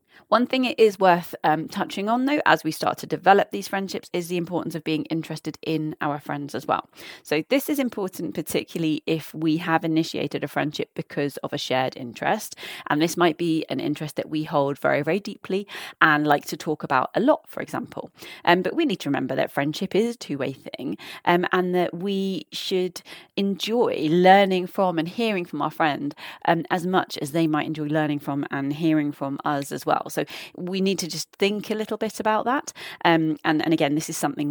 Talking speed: 215 wpm